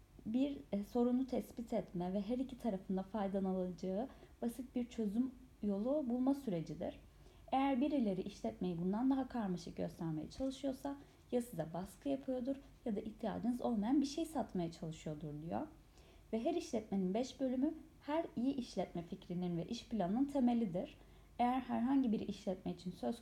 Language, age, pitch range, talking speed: Turkish, 30-49, 190-250 Hz, 145 wpm